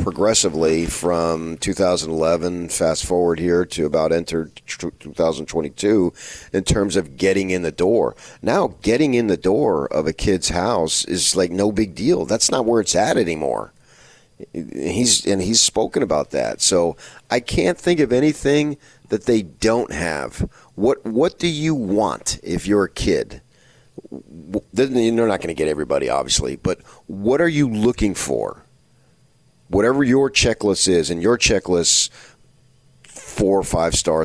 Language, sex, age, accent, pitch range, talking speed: English, male, 40-59, American, 80-115 Hz, 150 wpm